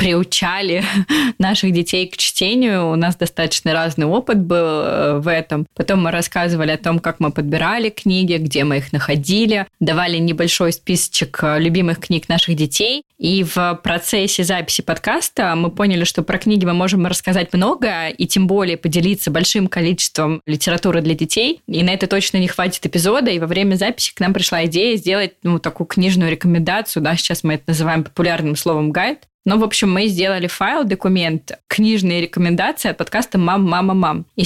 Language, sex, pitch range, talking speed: Russian, female, 170-195 Hz, 170 wpm